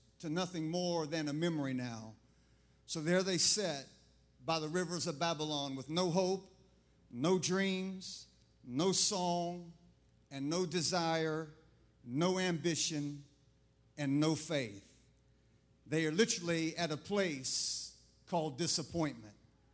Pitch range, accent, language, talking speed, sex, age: 135-185 Hz, American, English, 120 wpm, male, 50-69